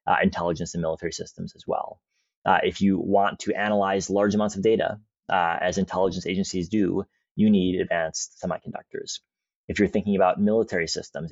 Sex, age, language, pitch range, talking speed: male, 30-49, English, 90-105 Hz, 170 wpm